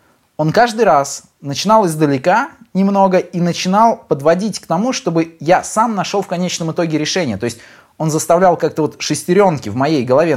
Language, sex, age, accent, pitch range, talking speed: Russian, male, 20-39, native, 140-190 Hz, 170 wpm